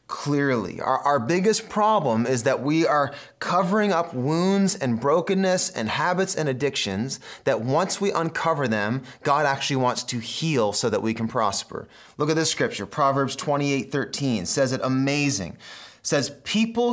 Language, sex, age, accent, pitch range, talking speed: English, male, 30-49, American, 125-180 Hz, 160 wpm